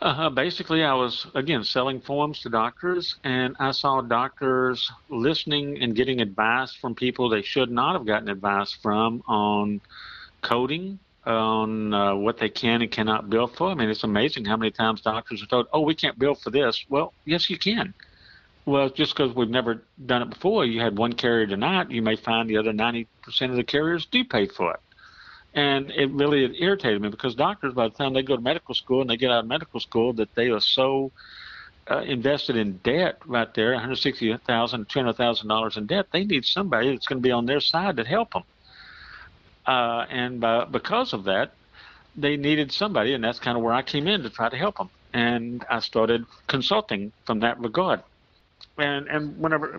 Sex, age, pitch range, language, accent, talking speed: male, 50-69, 115-145 Hz, English, American, 200 wpm